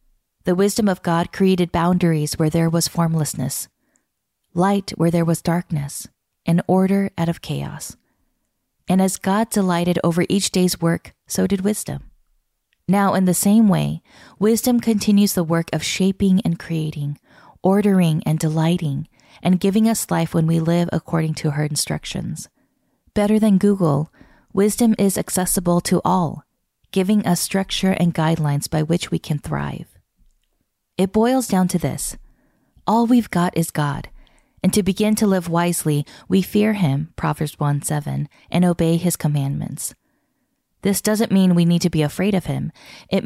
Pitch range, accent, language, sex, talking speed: 160-195 Hz, American, English, female, 155 wpm